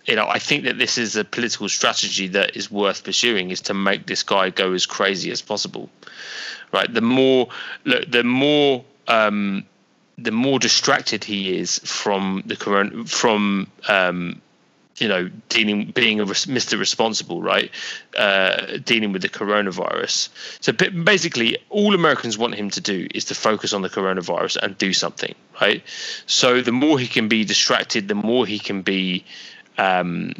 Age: 20-39